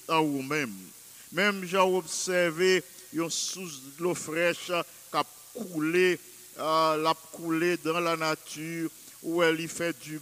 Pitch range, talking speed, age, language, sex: 155-180 Hz, 140 wpm, 50-69, English, male